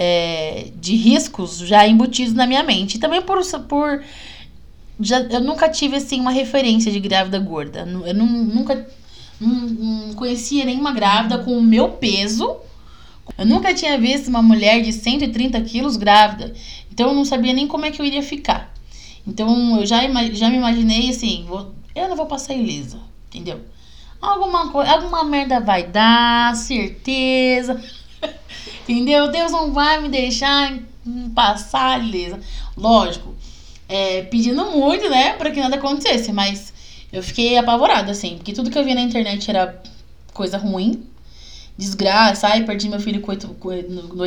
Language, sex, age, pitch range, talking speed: Portuguese, female, 20-39, 195-255 Hz, 145 wpm